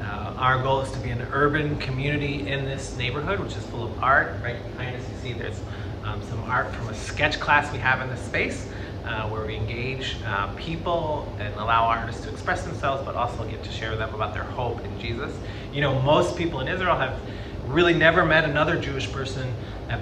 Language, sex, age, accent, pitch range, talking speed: English, male, 30-49, American, 105-130 Hz, 220 wpm